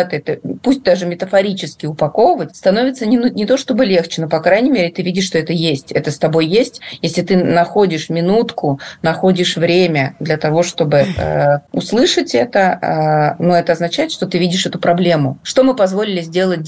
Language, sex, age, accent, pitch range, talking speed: Russian, female, 30-49, native, 160-195 Hz, 175 wpm